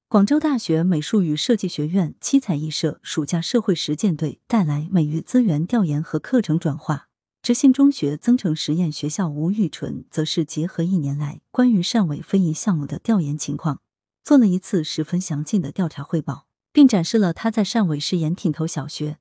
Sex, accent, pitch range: female, native, 155-220 Hz